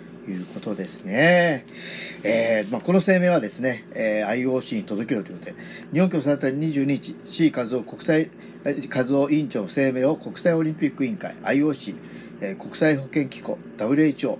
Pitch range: 120-175 Hz